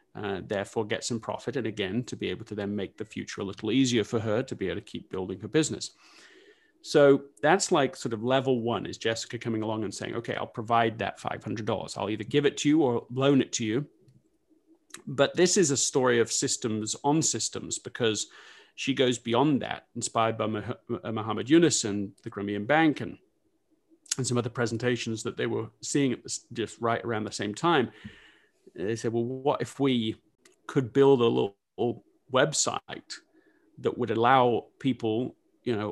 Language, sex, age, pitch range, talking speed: English, male, 30-49, 110-140 Hz, 190 wpm